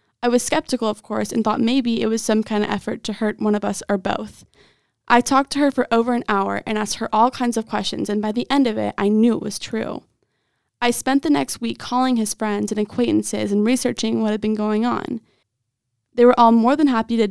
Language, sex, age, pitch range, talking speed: English, female, 20-39, 210-245 Hz, 245 wpm